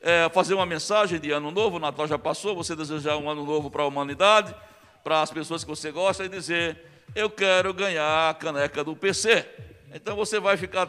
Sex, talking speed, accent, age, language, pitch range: male, 205 wpm, Brazilian, 60-79, Portuguese, 145-180 Hz